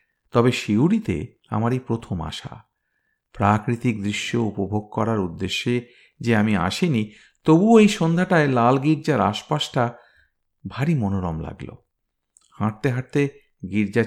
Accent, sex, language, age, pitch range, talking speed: native, male, Bengali, 50-69, 100-140 Hz, 105 wpm